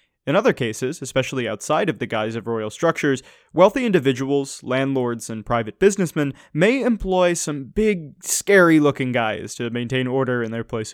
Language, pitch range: English, 120-170 Hz